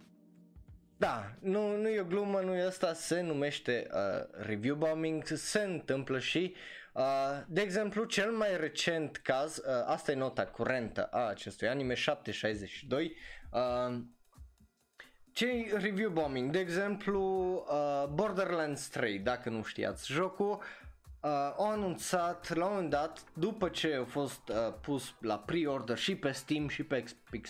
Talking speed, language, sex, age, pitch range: 145 wpm, Romanian, male, 20-39, 130-185 Hz